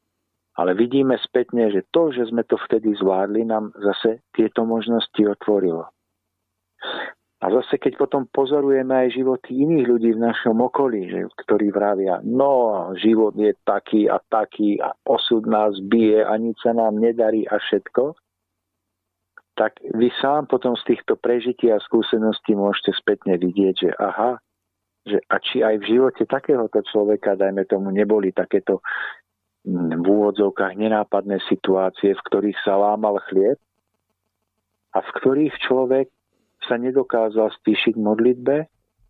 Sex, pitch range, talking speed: male, 100-120 Hz, 135 wpm